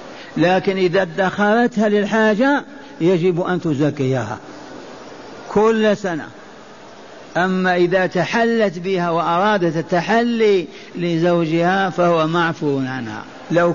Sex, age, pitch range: male, 50-69, 170-210 Hz